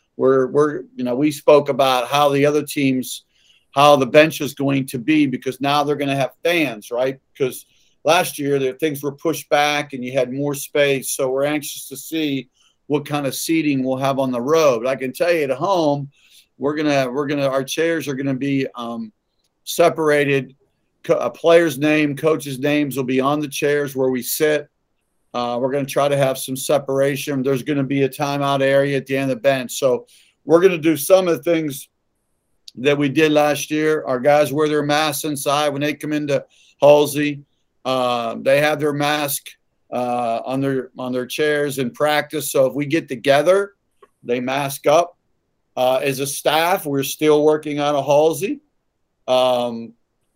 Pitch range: 135-150 Hz